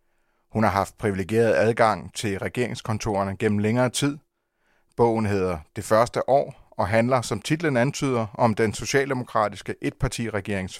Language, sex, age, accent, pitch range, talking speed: Danish, male, 30-49, native, 105-125 Hz, 135 wpm